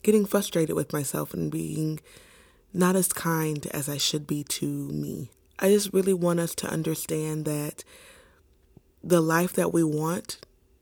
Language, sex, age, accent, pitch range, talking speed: English, female, 20-39, American, 155-190 Hz, 155 wpm